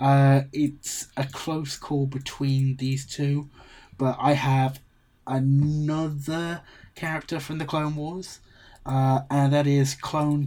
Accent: British